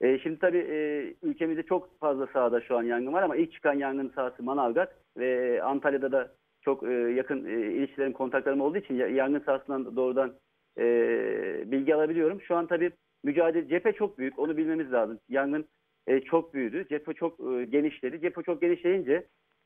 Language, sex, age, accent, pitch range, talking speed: Turkish, male, 50-69, native, 135-165 Hz, 150 wpm